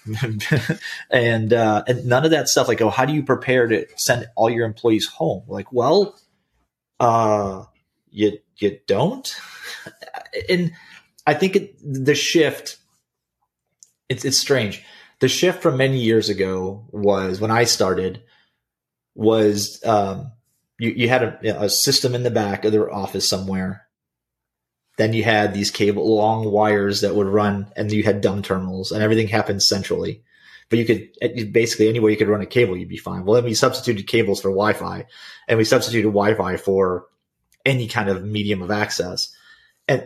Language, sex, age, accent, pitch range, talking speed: English, male, 30-49, American, 105-130 Hz, 165 wpm